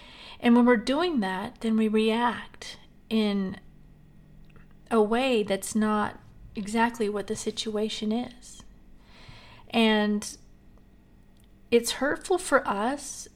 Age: 40-59